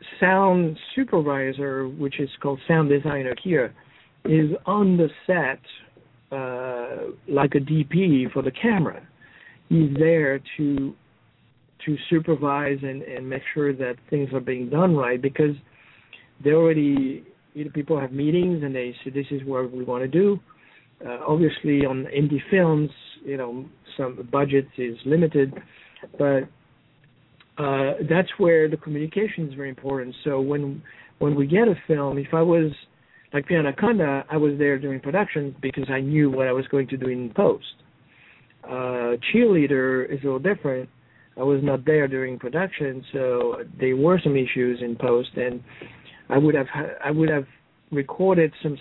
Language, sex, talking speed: English, male, 155 wpm